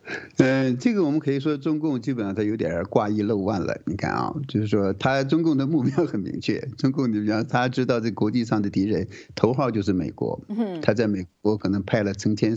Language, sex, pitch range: Chinese, male, 100-130 Hz